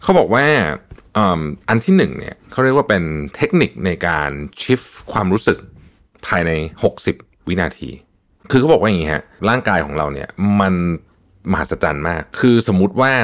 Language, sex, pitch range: Thai, male, 85-120 Hz